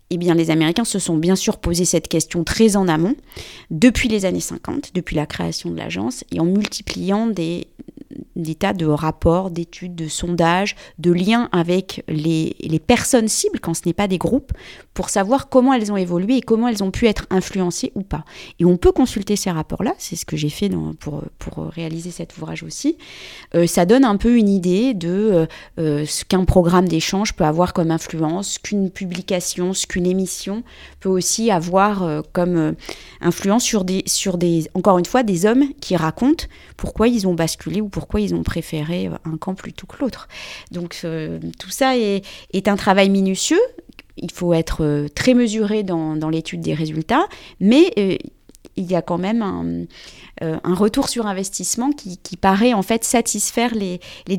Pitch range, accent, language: 165-210 Hz, French, French